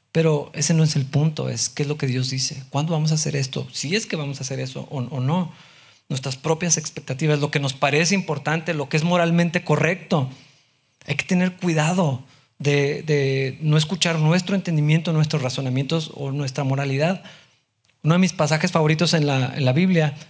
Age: 40-59